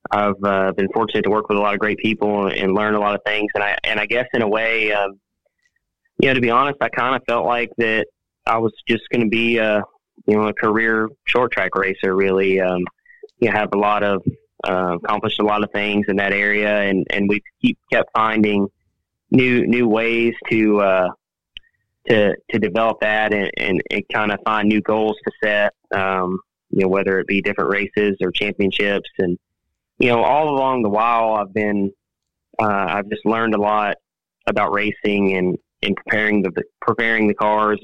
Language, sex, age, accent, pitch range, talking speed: English, male, 20-39, American, 100-115 Hz, 200 wpm